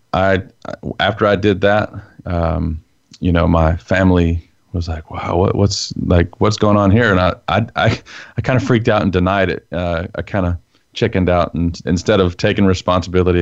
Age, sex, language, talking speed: 40-59, male, English, 185 wpm